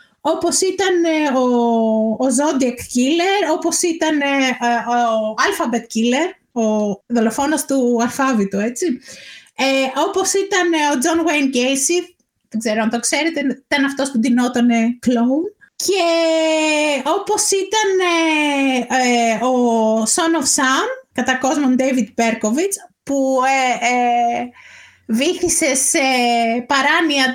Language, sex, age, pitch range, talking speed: Greek, female, 20-39, 240-330 Hz, 115 wpm